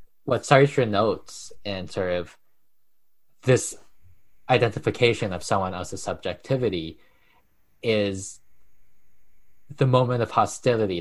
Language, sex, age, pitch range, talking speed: English, male, 20-39, 95-140 Hz, 95 wpm